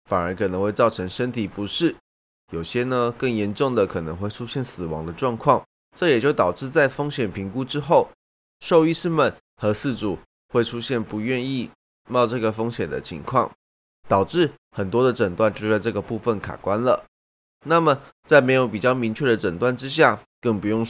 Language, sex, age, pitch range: Chinese, male, 20-39, 100-135 Hz